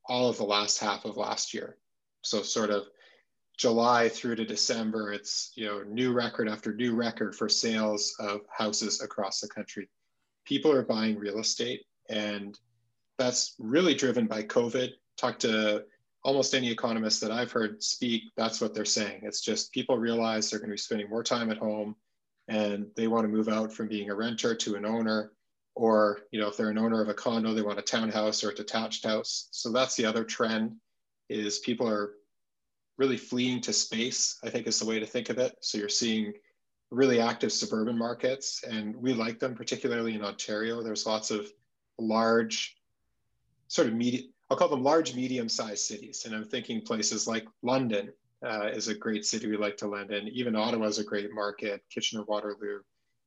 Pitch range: 105-120 Hz